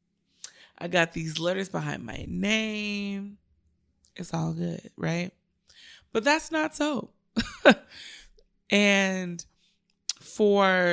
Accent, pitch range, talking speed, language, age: American, 160-200 Hz, 95 wpm, English, 20-39